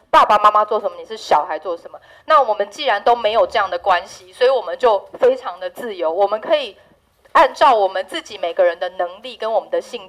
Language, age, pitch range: Chinese, 30-49, 185-255 Hz